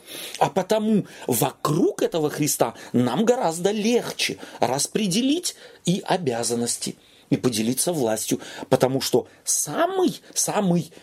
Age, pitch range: 40-59, 120-175 Hz